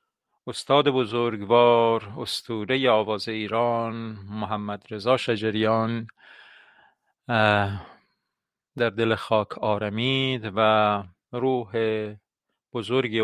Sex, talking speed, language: male, 70 wpm, Persian